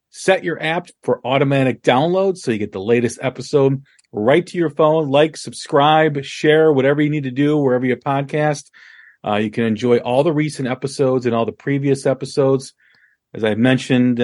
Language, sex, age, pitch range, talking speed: English, male, 40-59, 120-150 Hz, 185 wpm